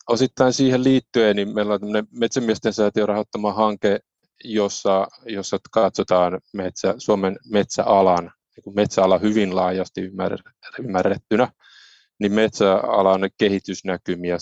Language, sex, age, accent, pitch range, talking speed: Finnish, male, 20-39, native, 95-115 Hz, 105 wpm